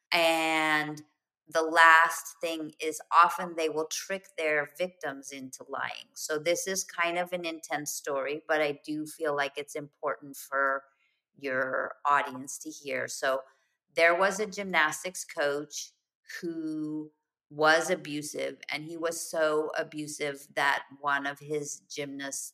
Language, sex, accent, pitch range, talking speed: English, female, American, 145-170 Hz, 140 wpm